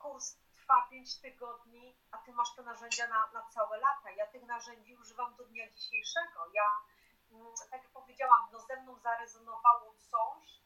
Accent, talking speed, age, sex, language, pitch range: native, 170 wpm, 30-49, female, Polish, 230-285 Hz